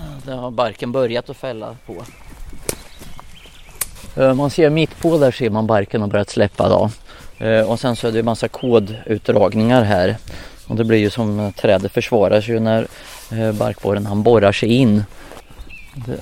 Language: Swedish